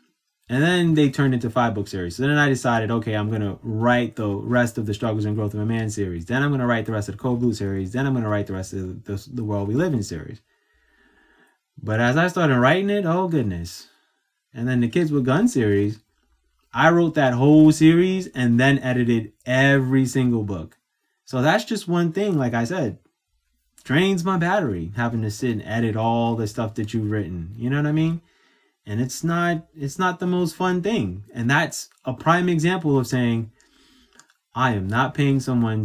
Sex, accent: male, American